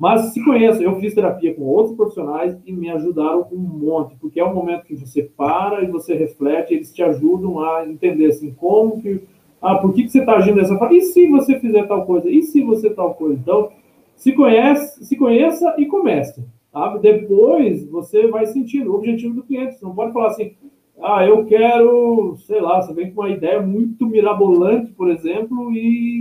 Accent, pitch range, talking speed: Brazilian, 185-280 Hz, 200 wpm